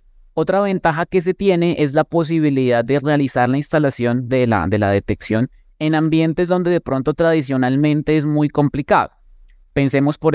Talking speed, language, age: 160 wpm, Spanish, 20-39